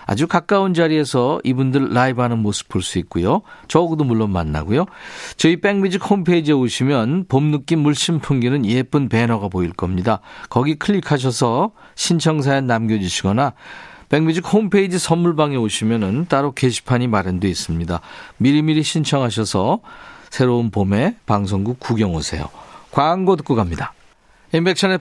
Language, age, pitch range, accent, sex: Korean, 40-59, 115-170 Hz, native, male